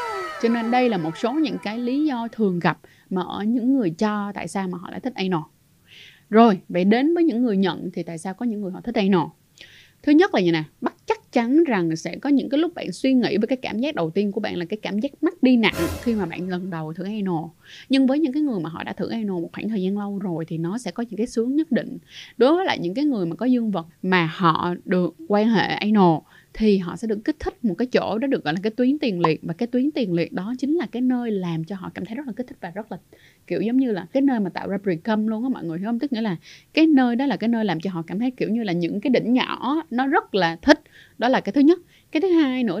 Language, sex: Vietnamese, female